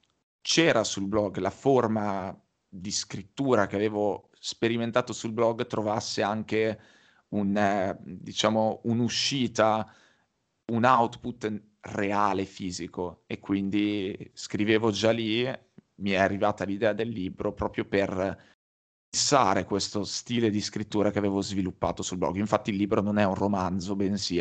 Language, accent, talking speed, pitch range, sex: Italian, native, 130 wpm, 100-115 Hz, male